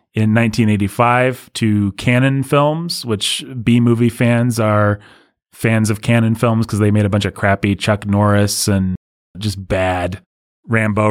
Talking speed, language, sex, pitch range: 140 wpm, English, male, 105-120 Hz